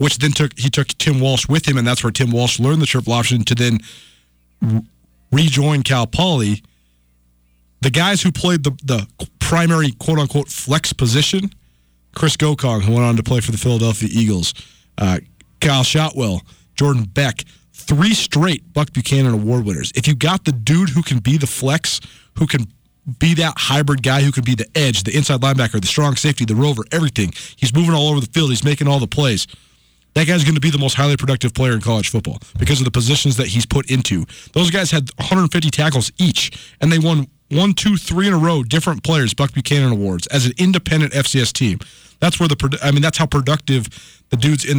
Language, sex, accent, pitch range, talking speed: English, male, American, 120-150 Hz, 205 wpm